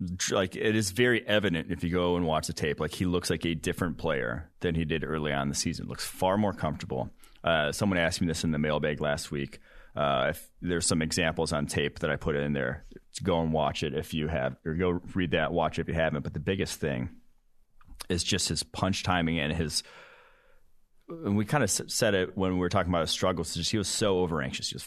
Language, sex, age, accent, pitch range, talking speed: English, male, 30-49, American, 80-95 Hz, 245 wpm